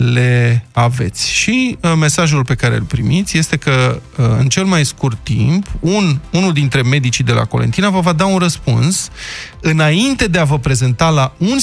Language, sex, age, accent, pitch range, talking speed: Romanian, male, 20-39, native, 125-175 Hz, 185 wpm